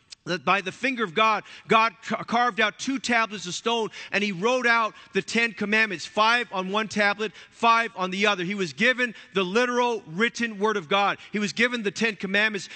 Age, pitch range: 40-59, 190-225 Hz